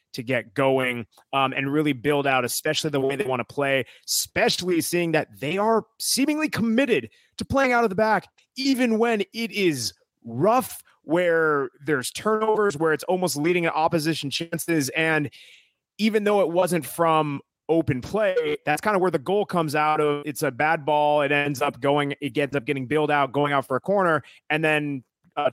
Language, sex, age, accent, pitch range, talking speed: English, male, 30-49, American, 140-175 Hz, 195 wpm